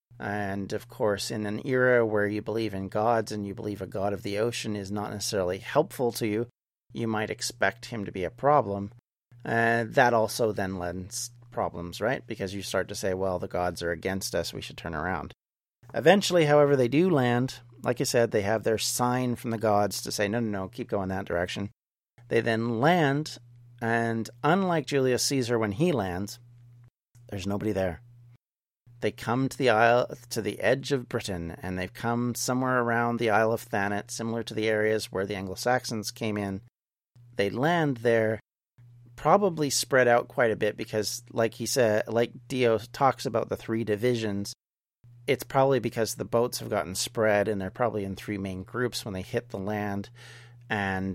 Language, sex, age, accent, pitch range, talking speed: English, male, 40-59, American, 105-125 Hz, 190 wpm